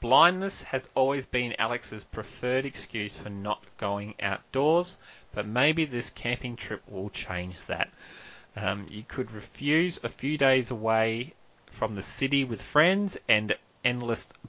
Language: English